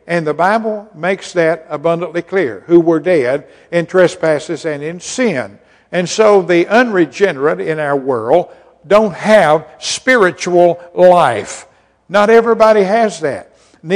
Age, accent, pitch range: 60-79, American, 155-200 Hz